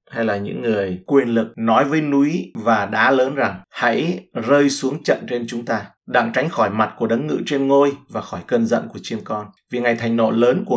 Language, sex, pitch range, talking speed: Vietnamese, male, 110-135 Hz, 235 wpm